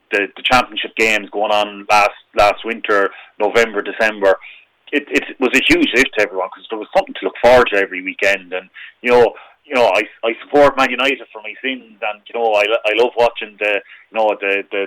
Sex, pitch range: male, 100-115 Hz